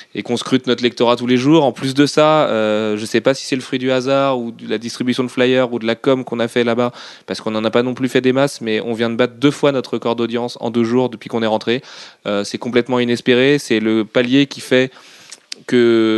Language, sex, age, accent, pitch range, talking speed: French, male, 20-39, French, 110-130 Hz, 275 wpm